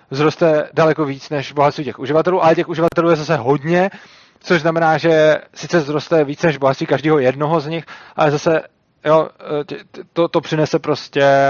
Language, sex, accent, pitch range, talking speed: Czech, male, native, 140-170 Hz, 170 wpm